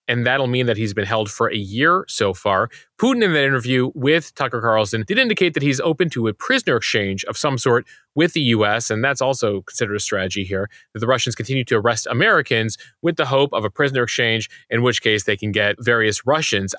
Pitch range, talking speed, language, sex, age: 110-135 Hz, 225 wpm, English, male, 30-49